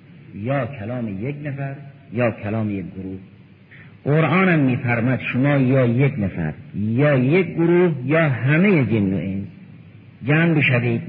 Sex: male